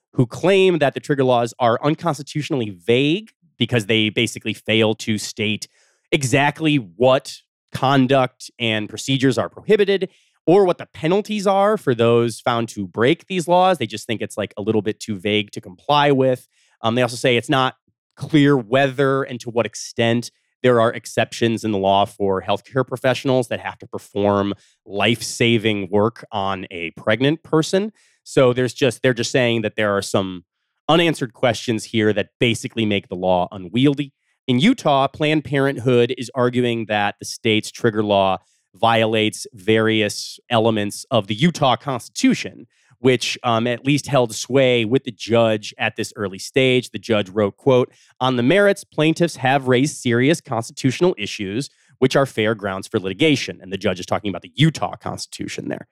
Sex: male